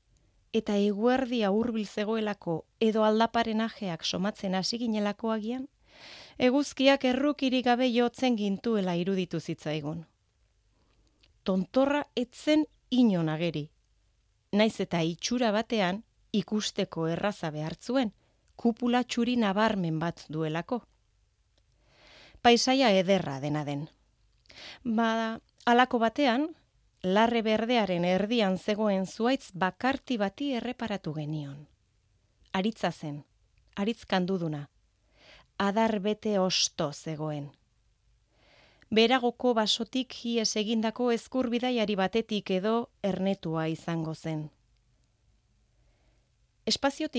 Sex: female